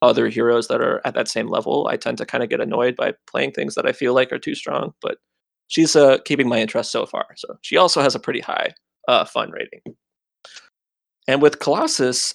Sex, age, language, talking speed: male, 20-39, English, 225 wpm